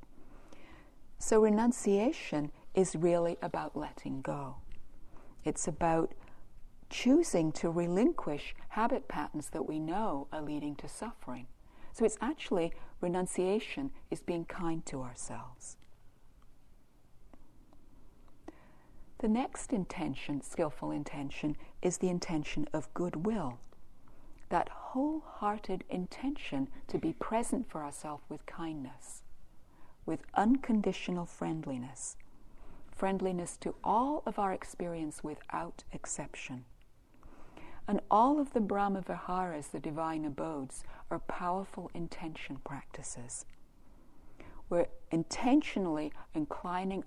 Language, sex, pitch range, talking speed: English, female, 150-205 Hz, 95 wpm